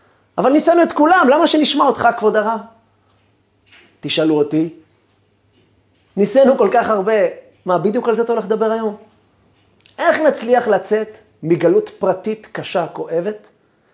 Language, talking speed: Hebrew, 130 wpm